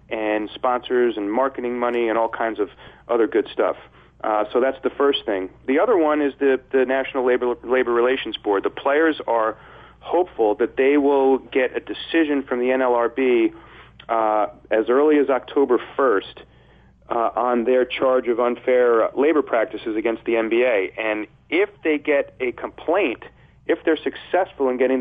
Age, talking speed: 40-59, 170 wpm